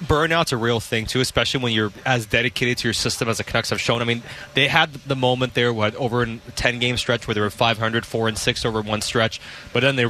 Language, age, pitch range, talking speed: English, 20-39, 115-140 Hz, 255 wpm